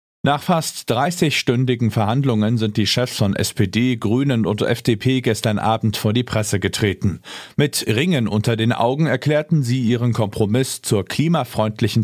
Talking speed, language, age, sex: 145 wpm, German, 40-59, male